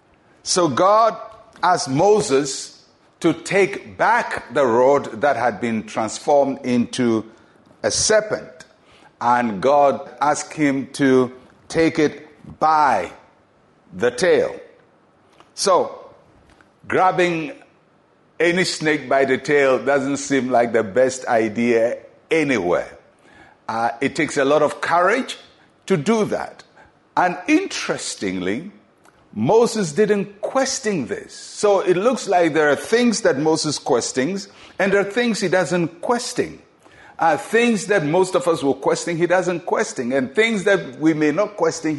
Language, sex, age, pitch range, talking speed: English, male, 60-79, 140-215 Hz, 130 wpm